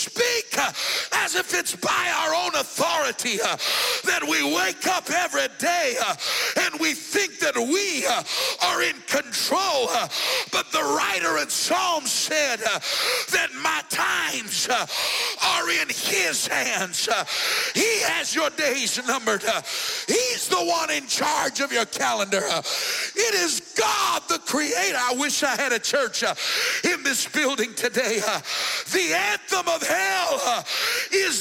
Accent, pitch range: American, 255-360 Hz